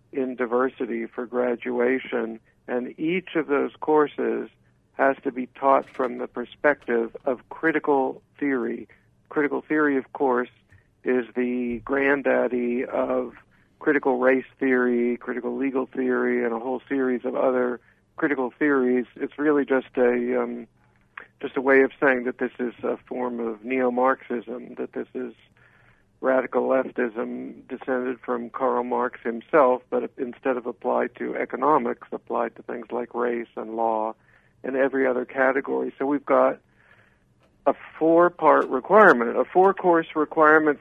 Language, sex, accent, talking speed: English, male, American, 140 wpm